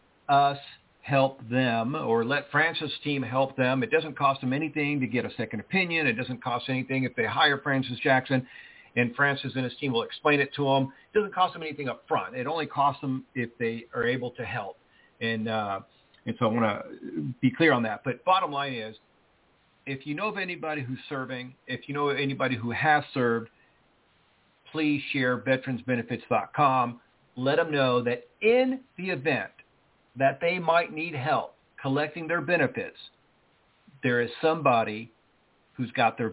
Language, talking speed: English, 180 wpm